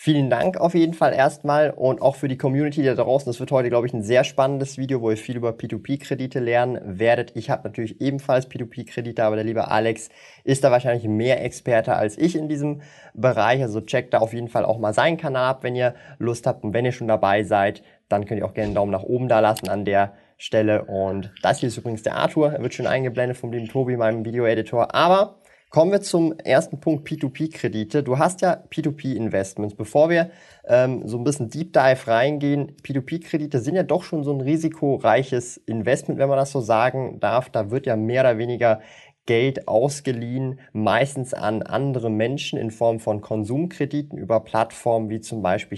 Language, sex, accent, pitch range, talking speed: German, male, German, 110-140 Hz, 205 wpm